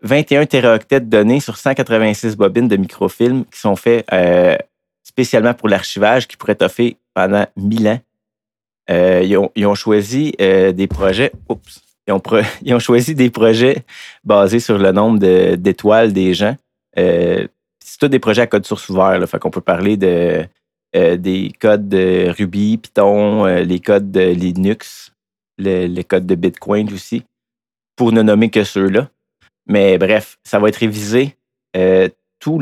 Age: 30-49